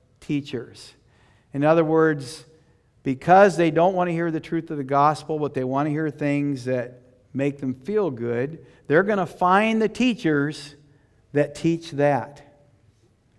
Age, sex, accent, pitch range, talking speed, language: 50-69, male, American, 130-180 Hz, 155 wpm, English